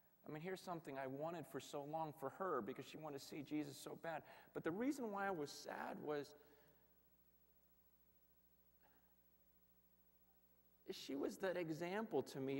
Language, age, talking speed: English, 40-59, 155 wpm